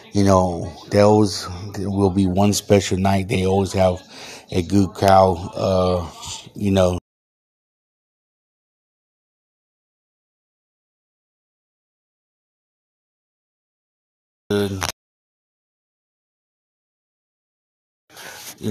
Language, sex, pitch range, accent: English, male, 95-100 Hz, American